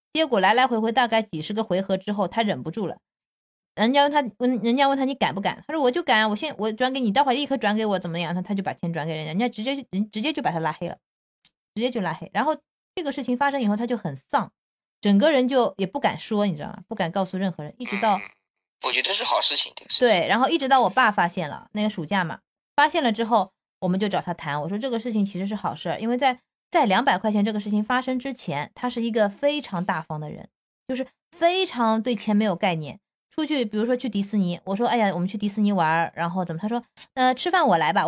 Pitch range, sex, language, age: 190-255 Hz, female, Chinese, 20-39